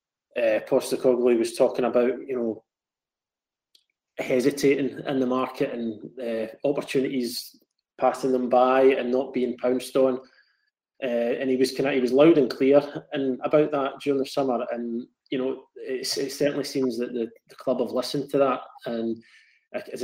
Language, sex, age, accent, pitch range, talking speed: English, male, 20-39, British, 120-135 Hz, 170 wpm